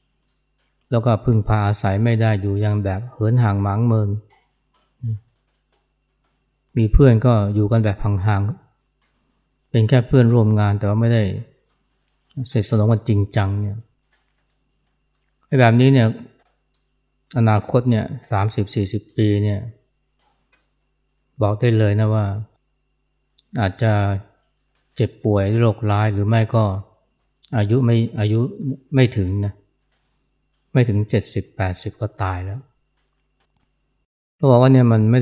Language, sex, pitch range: Thai, male, 100-120 Hz